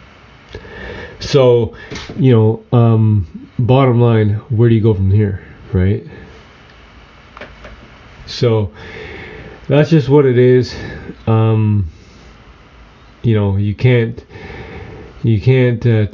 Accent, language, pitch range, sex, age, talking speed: American, English, 100-120 Hz, male, 30-49, 100 wpm